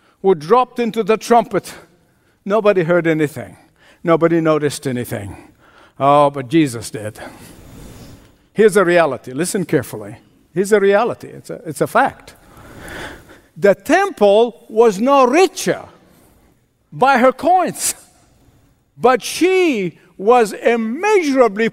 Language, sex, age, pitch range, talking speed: English, male, 60-79, 165-275 Hz, 110 wpm